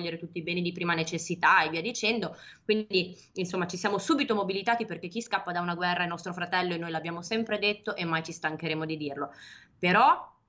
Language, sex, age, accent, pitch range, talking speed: Italian, female, 20-39, native, 165-195 Hz, 205 wpm